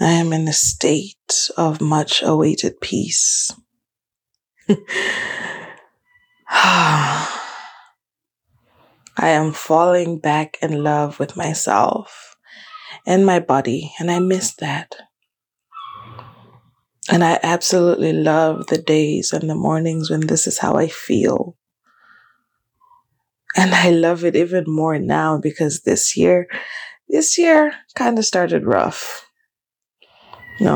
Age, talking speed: 20-39, 110 wpm